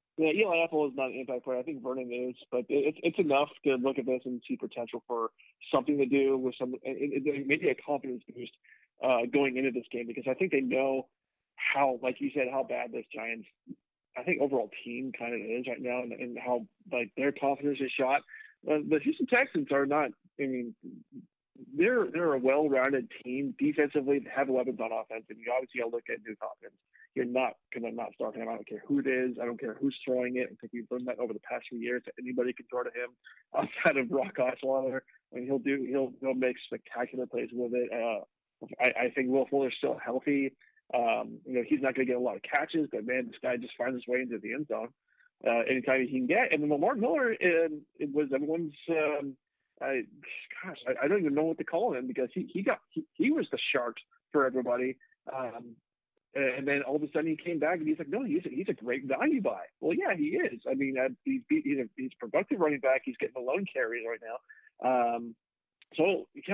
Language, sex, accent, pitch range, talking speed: English, male, American, 125-155 Hz, 235 wpm